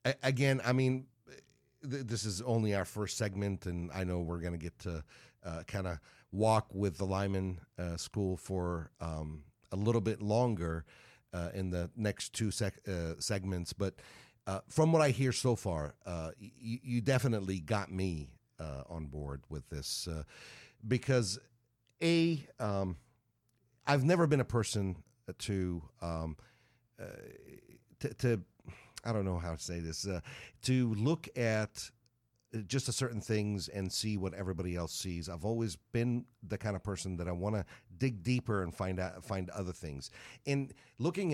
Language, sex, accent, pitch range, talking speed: English, male, American, 90-120 Hz, 170 wpm